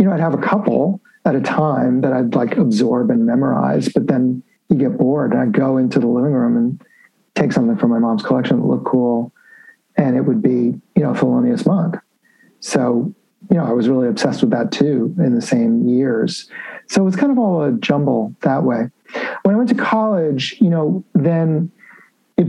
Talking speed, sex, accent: 210 wpm, male, American